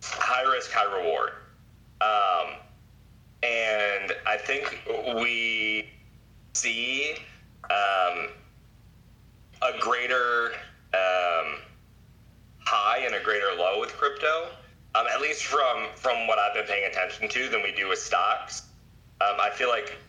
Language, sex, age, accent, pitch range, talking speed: English, male, 30-49, American, 105-125 Hz, 120 wpm